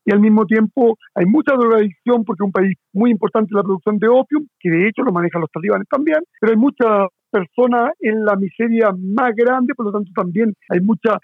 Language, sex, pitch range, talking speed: Spanish, male, 205-250 Hz, 210 wpm